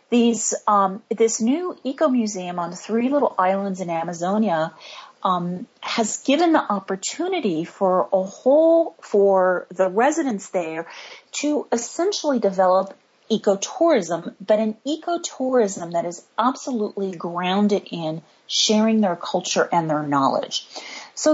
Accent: American